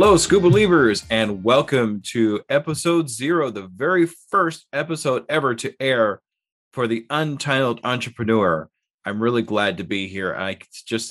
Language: English